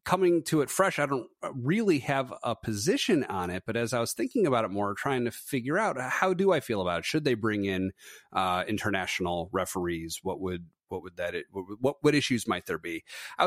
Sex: male